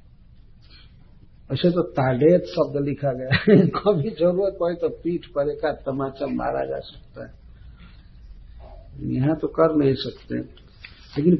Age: 60-79